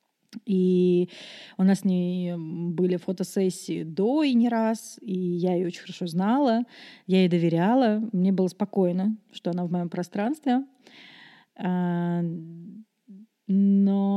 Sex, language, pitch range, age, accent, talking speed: female, Russian, 185-230 Hz, 30-49, native, 125 wpm